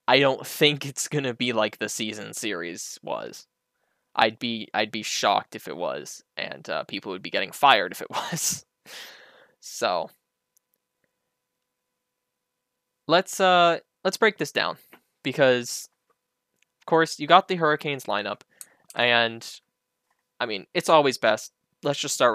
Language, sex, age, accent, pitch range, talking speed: English, male, 10-29, American, 115-145 Hz, 140 wpm